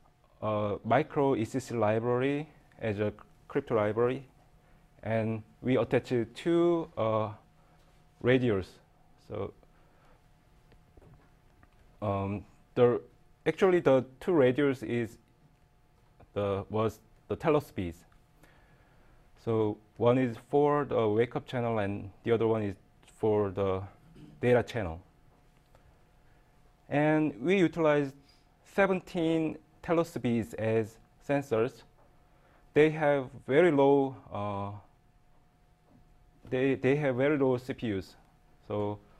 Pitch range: 110-145 Hz